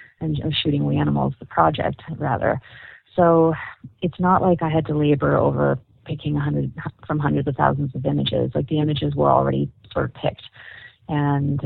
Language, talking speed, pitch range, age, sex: English, 175 wpm, 140-170 Hz, 30-49, female